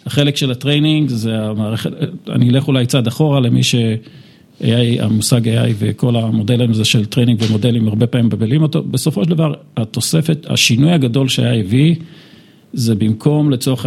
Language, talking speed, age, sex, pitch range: Hebrew, 150 wpm, 50-69, male, 115-140 Hz